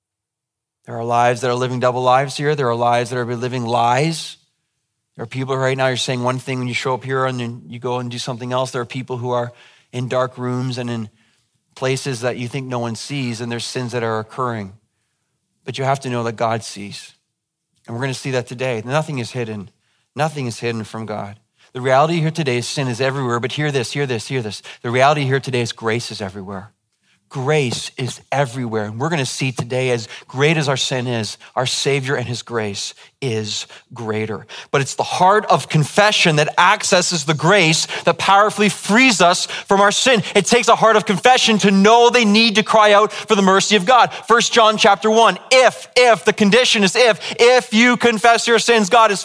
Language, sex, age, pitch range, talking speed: English, male, 40-59, 125-205 Hz, 220 wpm